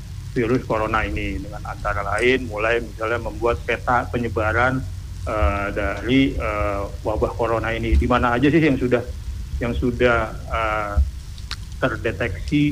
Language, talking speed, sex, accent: English, 125 wpm, male, Indonesian